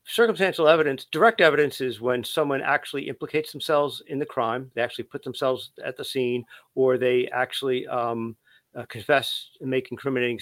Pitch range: 125-150 Hz